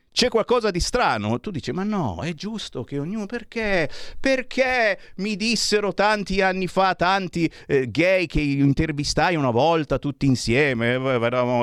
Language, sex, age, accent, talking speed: Italian, male, 50-69, native, 150 wpm